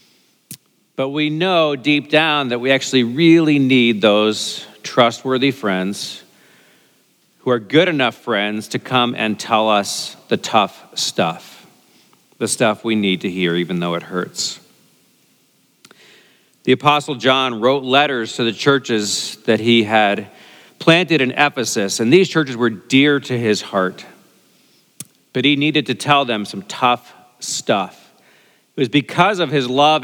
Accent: American